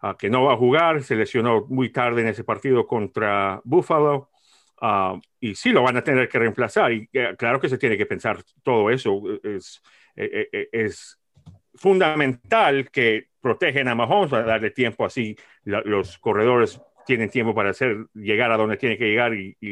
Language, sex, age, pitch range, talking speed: English, male, 40-59, 110-150 Hz, 185 wpm